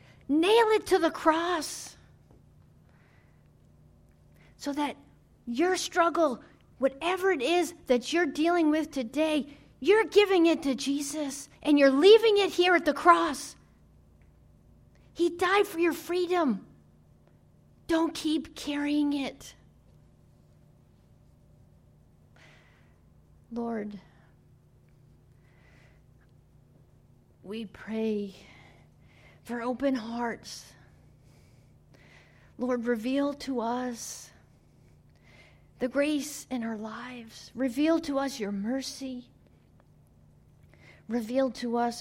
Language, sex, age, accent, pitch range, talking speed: English, female, 40-59, American, 235-315 Hz, 90 wpm